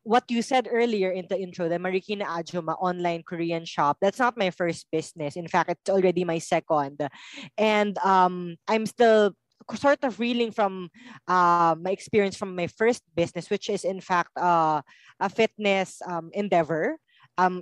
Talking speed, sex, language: 165 wpm, female, English